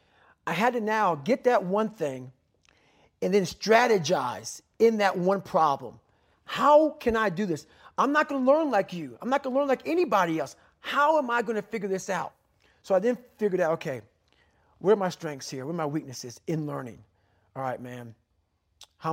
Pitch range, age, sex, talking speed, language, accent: 140-215 Hz, 40-59, male, 190 wpm, English, American